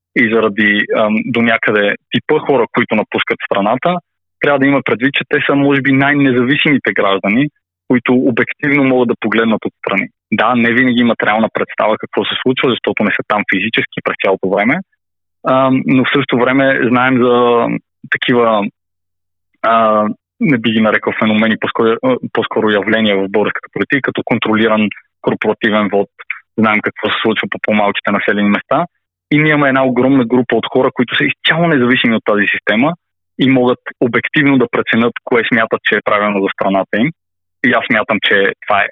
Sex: male